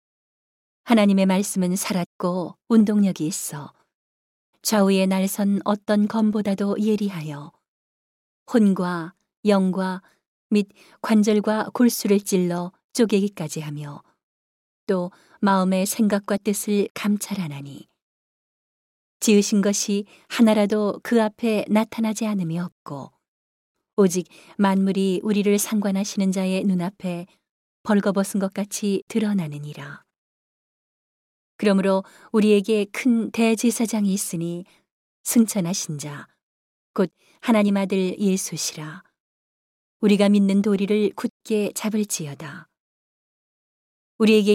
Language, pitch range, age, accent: Korean, 180-215 Hz, 40-59, native